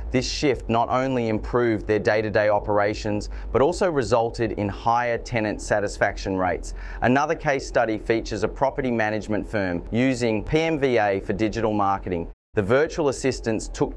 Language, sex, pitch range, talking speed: English, male, 105-120 Hz, 140 wpm